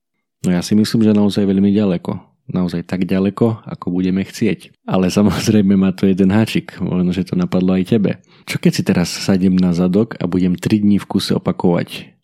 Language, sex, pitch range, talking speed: Slovak, male, 95-105 Hz, 195 wpm